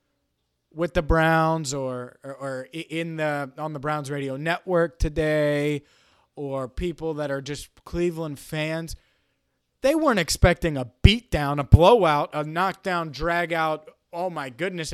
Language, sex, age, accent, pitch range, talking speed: English, male, 20-39, American, 145-205 Hz, 135 wpm